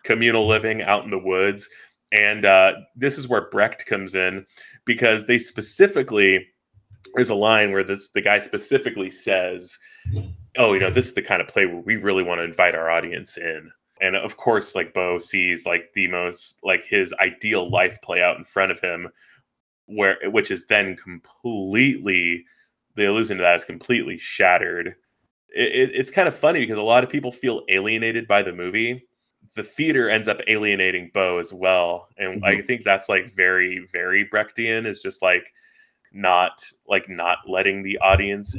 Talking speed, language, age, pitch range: 175 wpm, English, 20-39, 95-115 Hz